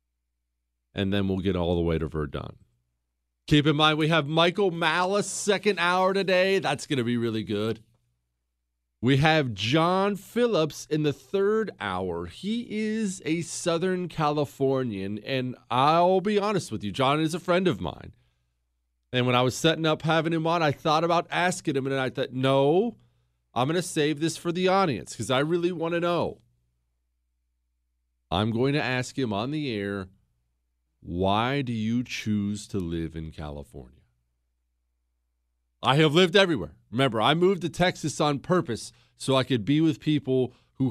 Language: English